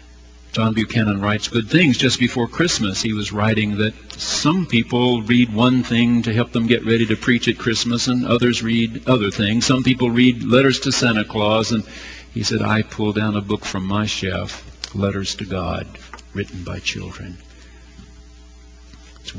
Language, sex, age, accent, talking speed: English, male, 50-69, American, 175 wpm